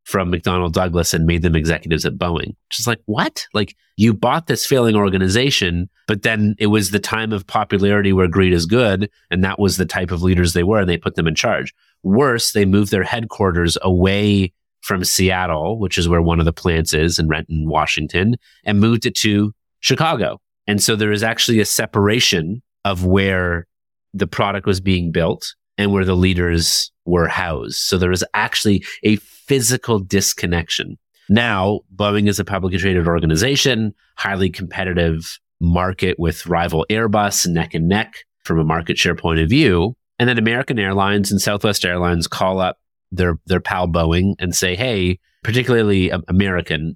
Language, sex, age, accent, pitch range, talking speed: English, male, 30-49, American, 85-105 Hz, 175 wpm